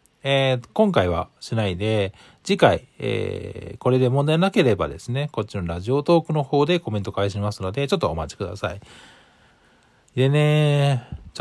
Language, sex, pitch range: Japanese, male, 100-145 Hz